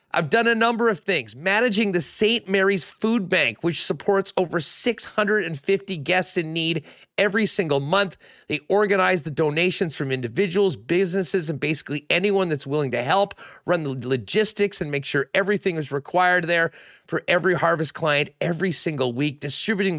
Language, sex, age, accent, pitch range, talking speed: English, male, 40-59, American, 145-200 Hz, 160 wpm